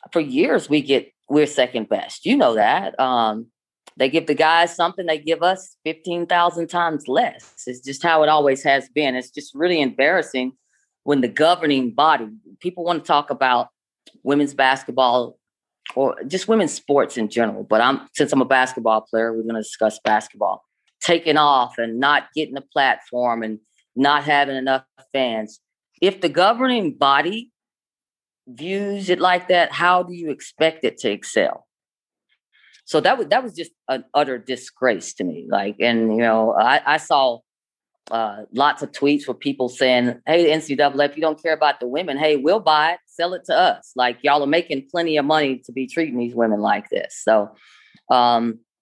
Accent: American